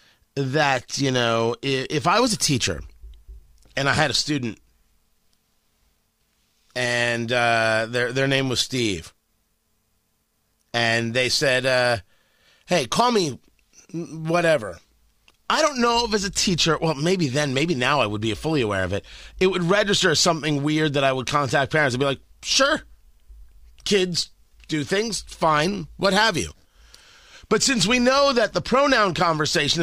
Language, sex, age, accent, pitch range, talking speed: English, male, 30-49, American, 115-185 Hz, 155 wpm